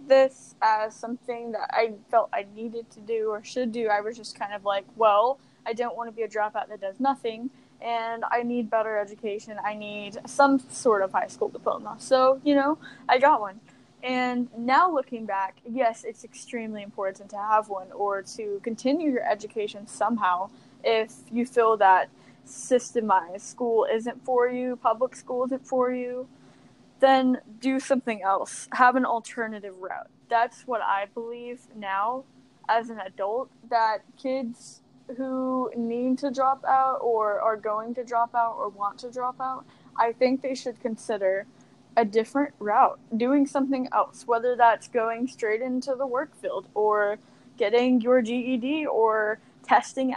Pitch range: 215-255 Hz